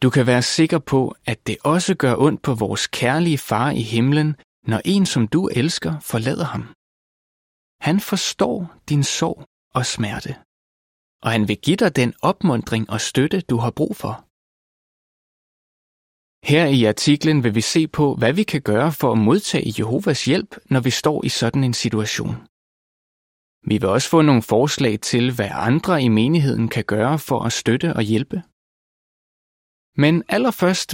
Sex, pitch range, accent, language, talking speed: male, 110-150 Hz, native, Danish, 165 wpm